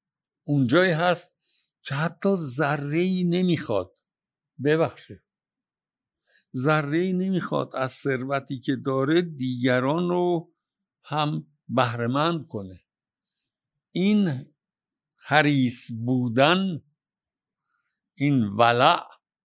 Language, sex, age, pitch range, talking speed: Persian, male, 60-79, 125-180 Hz, 75 wpm